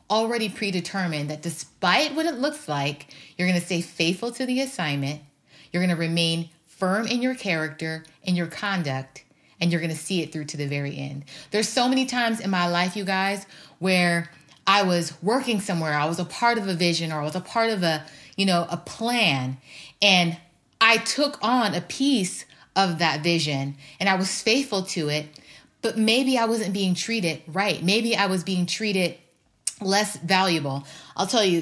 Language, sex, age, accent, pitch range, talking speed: English, female, 30-49, American, 165-220 Hz, 195 wpm